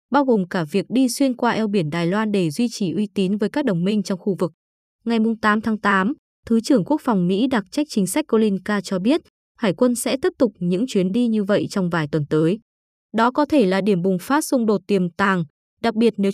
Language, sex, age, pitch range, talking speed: Vietnamese, female, 20-39, 195-250 Hz, 245 wpm